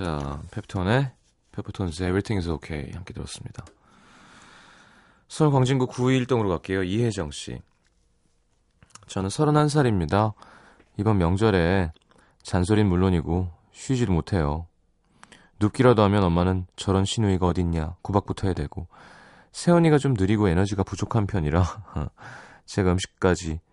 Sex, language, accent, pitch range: male, Korean, native, 90-120 Hz